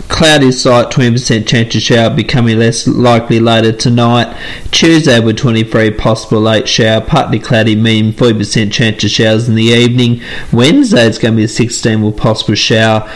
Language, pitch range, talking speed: English, 110-135 Hz, 165 wpm